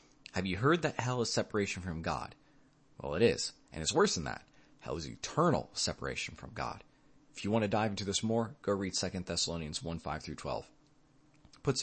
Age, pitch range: 30-49, 90-115 Hz